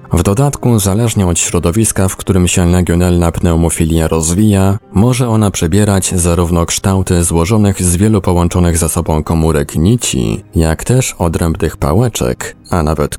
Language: Polish